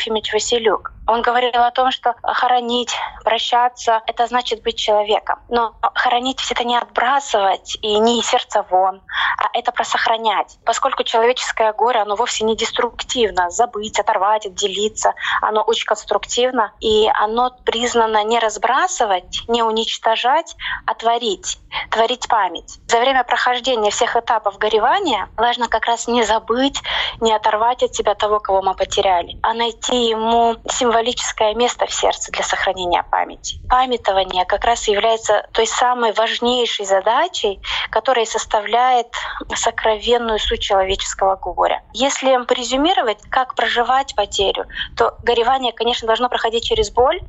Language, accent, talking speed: Russian, native, 135 wpm